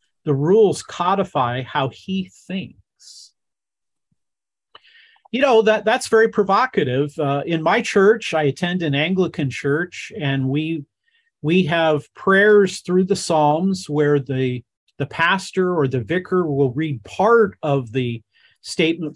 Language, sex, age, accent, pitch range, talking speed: English, male, 50-69, American, 140-185 Hz, 130 wpm